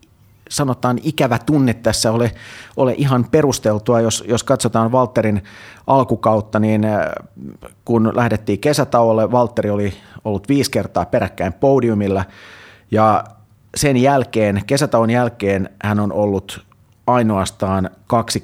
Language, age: Finnish, 30-49